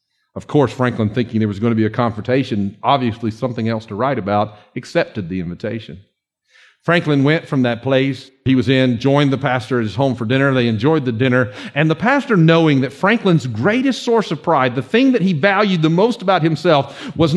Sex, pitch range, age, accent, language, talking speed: male, 130-195 Hz, 50-69, American, English, 205 wpm